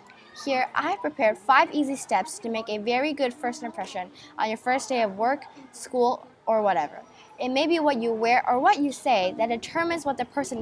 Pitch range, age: 210-285 Hz, 10-29